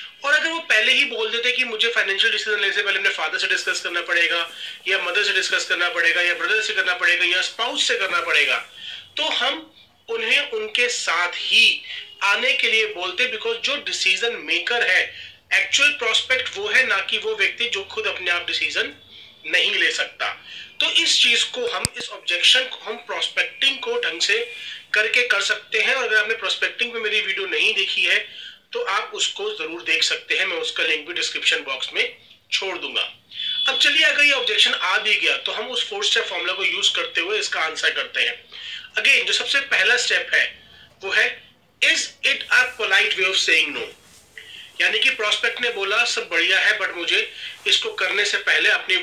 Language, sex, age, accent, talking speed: Hindi, male, 30-49, native, 175 wpm